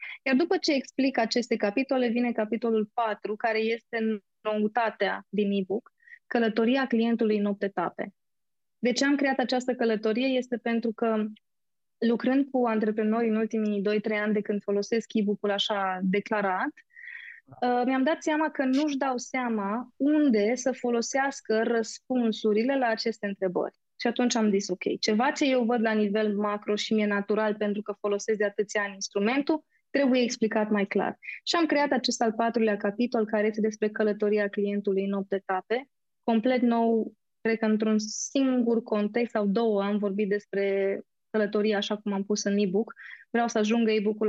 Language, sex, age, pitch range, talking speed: Romanian, female, 20-39, 210-245 Hz, 160 wpm